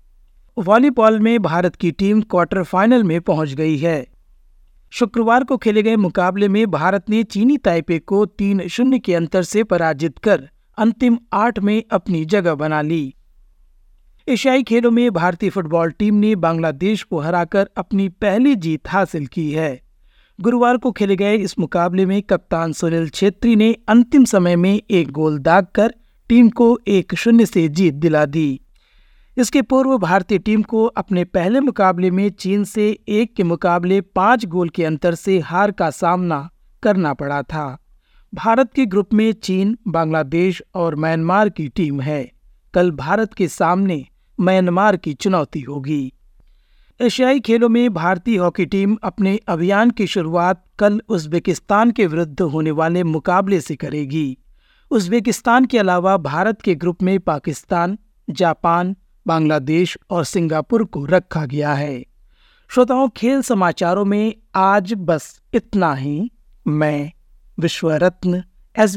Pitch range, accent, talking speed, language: 165-215 Hz, native, 145 wpm, Hindi